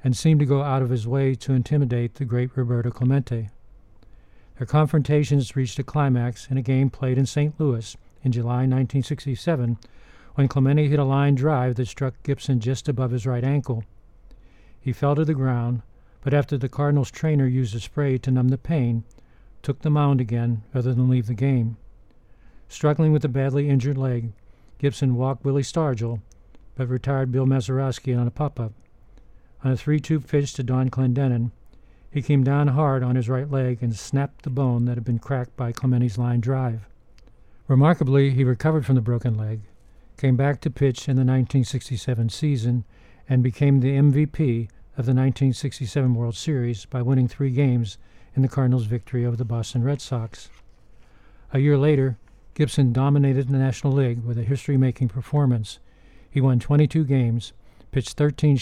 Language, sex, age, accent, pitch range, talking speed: English, male, 50-69, American, 120-140 Hz, 170 wpm